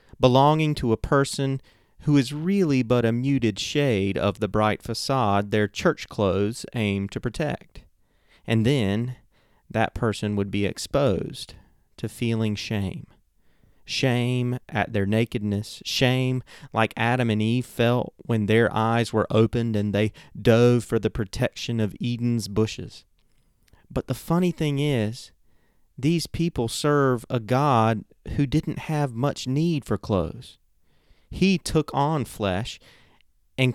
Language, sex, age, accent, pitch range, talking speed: English, male, 30-49, American, 105-135 Hz, 135 wpm